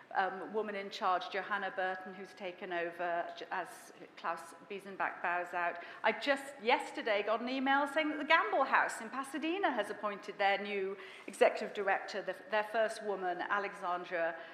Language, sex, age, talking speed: English, female, 40-59, 155 wpm